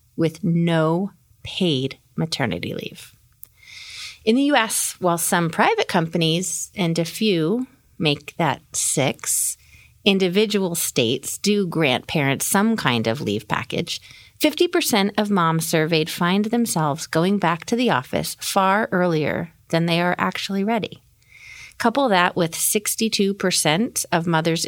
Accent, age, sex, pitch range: American, 30-49, female, 160-225 Hz